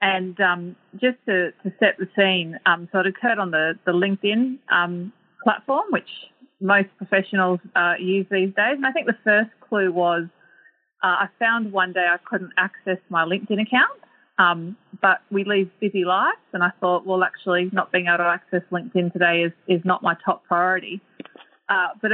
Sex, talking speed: female, 185 wpm